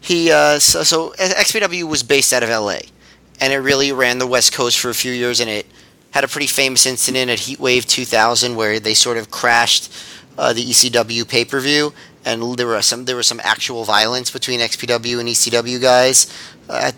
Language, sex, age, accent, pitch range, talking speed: English, male, 30-49, American, 115-135 Hz, 200 wpm